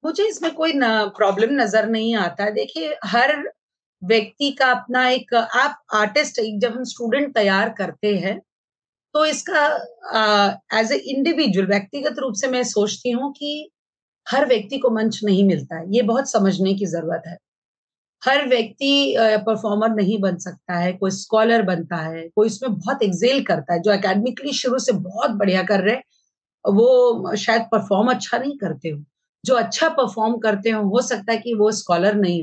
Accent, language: native, Hindi